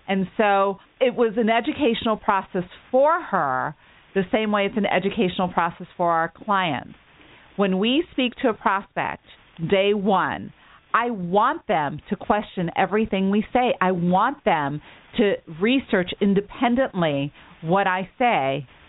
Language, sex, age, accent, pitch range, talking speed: English, female, 40-59, American, 165-210 Hz, 140 wpm